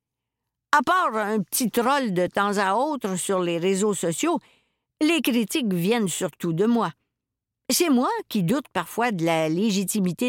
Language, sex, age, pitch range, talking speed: French, female, 50-69, 170-240 Hz, 155 wpm